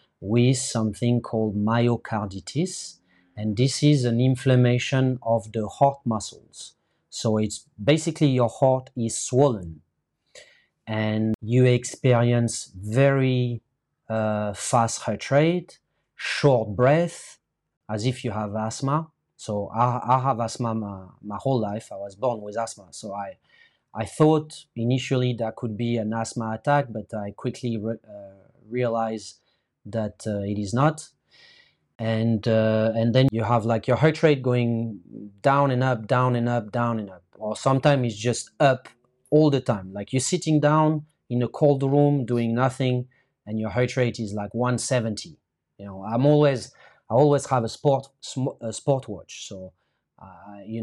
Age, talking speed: 30-49, 155 wpm